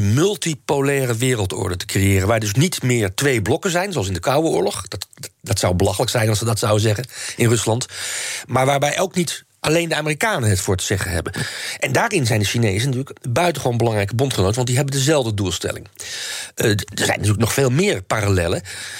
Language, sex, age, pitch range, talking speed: Dutch, male, 40-59, 110-145 Hz, 195 wpm